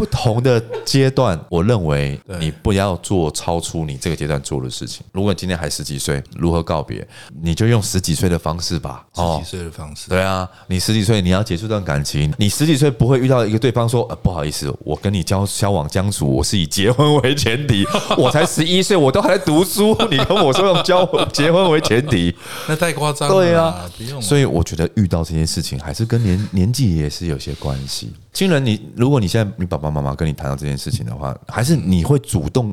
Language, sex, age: Chinese, male, 30-49